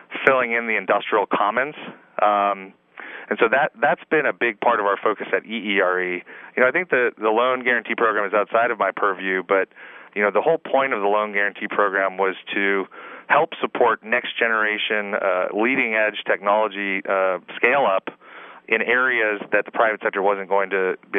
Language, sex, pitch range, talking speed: English, male, 95-110 Hz, 185 wpm